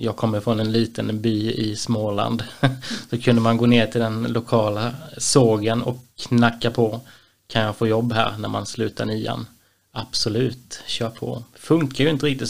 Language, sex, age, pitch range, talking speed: Swedish, male, 20-39, 110-125 Hz, 175 wpm